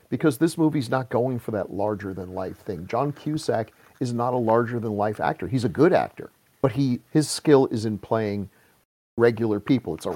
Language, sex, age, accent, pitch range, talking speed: English, male, 50-69, American, 110-150 Hz, 205 wpm